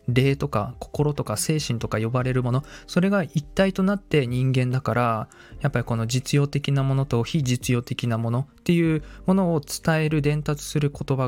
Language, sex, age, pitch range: Japanese, male, 20-39, 115-155 Hz